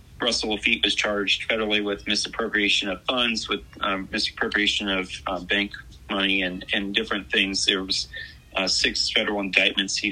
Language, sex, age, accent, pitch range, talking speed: English, male, 30-49, American, 95-105 Hz, 160 wpm